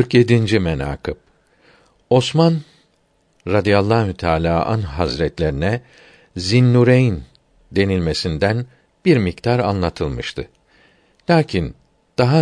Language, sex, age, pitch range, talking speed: Turkish, male, 60-79, 90-120 Hz, 70 wpm